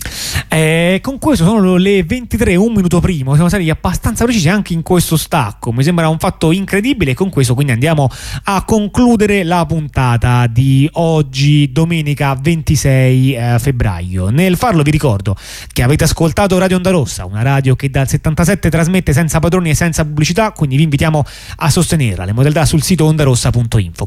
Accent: native